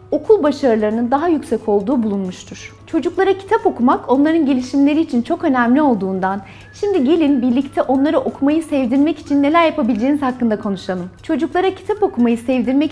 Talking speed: 140 wpm